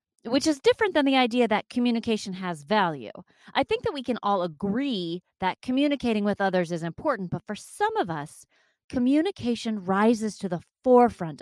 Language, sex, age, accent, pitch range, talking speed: English, female, 30-49, American, 185-255 Hz, 175 wpm